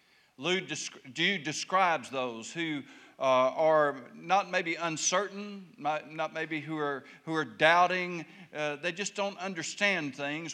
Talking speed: 120 wpm